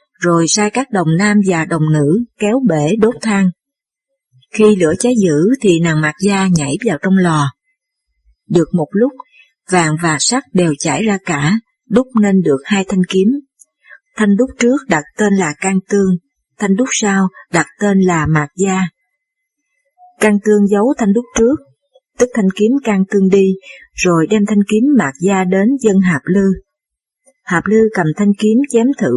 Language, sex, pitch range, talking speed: Vietnamese, female, 185-245 Hz, 175 wpm